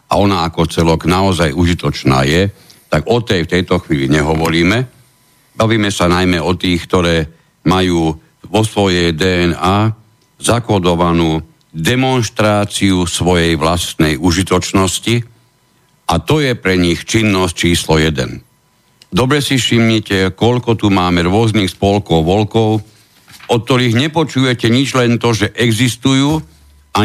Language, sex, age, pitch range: Slovak, male, 60-79, 90-120 Hz